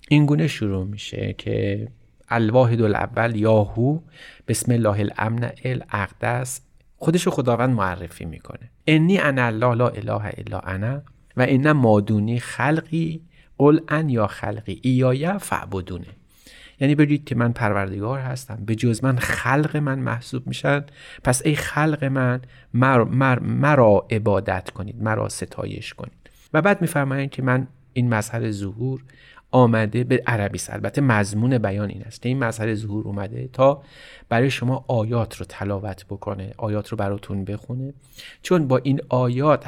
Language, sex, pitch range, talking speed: Persian, male, 105-135 Hz, 150 wpm